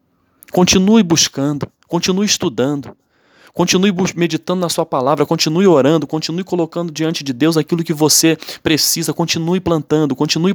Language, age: Portuguese, 20-39